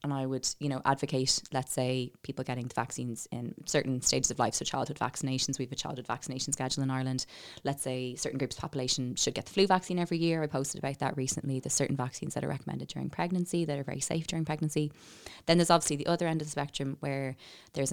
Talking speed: 235 wpm